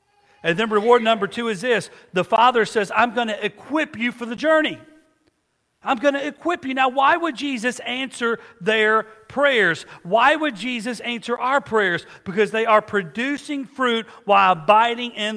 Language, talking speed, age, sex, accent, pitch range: English, 170 wpm, 40-59, male, American, 155-225 Hz